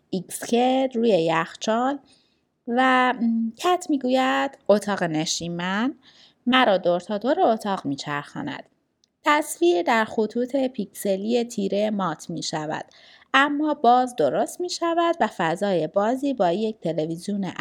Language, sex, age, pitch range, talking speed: Persian, female, 30-49, 175-260 Hz, 110 wpm